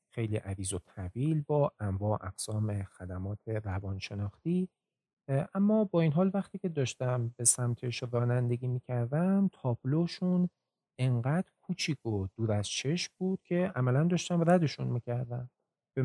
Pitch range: 110-165 Hz